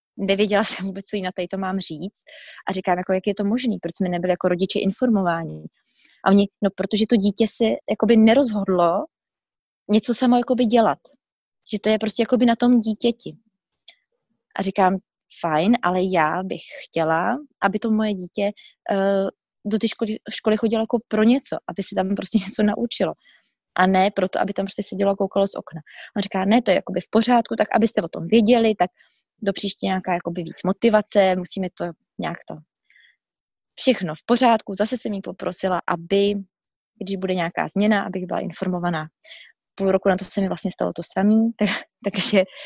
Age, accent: 20-39, native